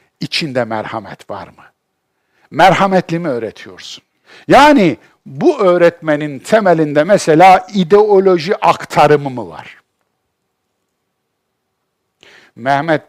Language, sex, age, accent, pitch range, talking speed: Turkish, male, 60-79, native, 140-220 Hz, 80 wpm